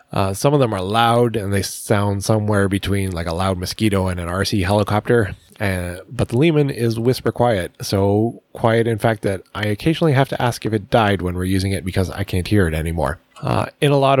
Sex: male